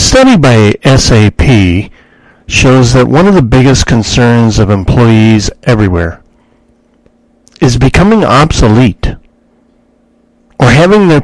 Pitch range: 115-150 Hz